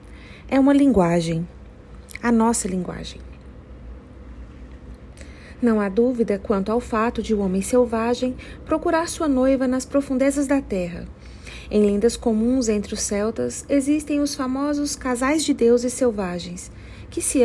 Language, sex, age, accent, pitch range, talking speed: Portuguese, female, 40-59, Brazilian, 200-270 Hz, 130 wpm